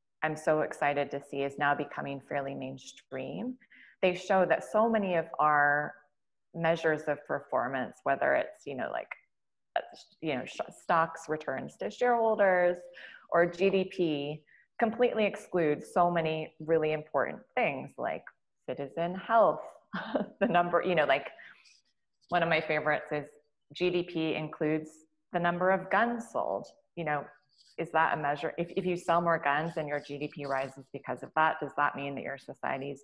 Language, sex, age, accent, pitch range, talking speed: English, female, 20-39, American, 145-175 Hz, 160 wpm